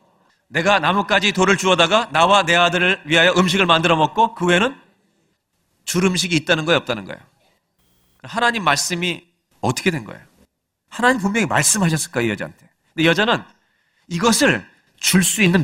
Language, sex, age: Korean, male, 40-59